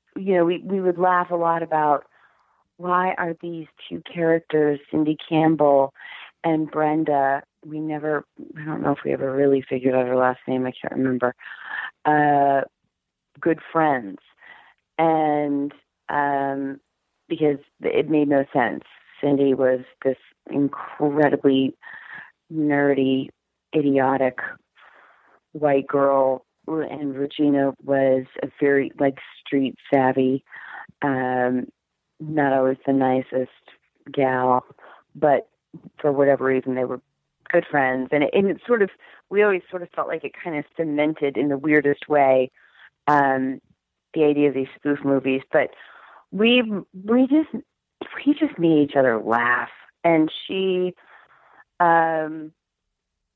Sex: female